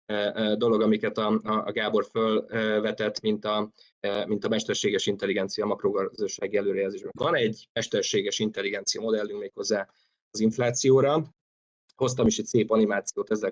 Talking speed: 125 wpm